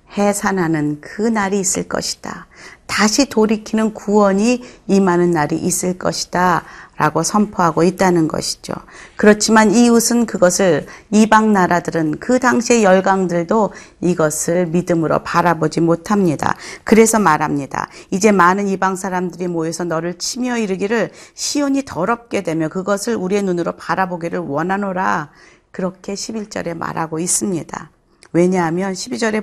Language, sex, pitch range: Korean, female, 170-225 Hz